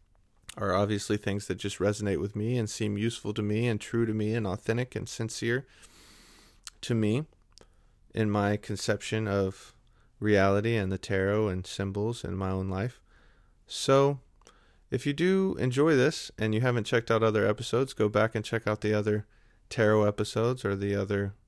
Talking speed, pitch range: 175 wpm, 100-120 Hz